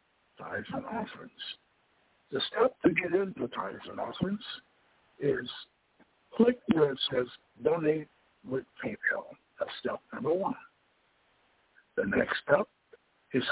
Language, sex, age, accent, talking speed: English, male, 60-79, American, 120 wpm